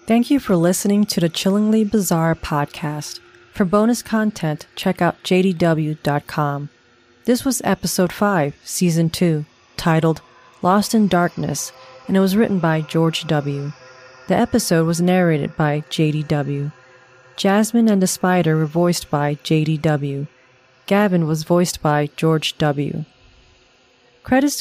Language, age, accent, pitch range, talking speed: English, 40-59, American, 150-190 Hz, 130 wpm